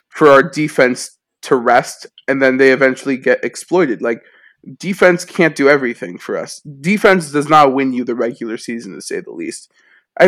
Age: 20-39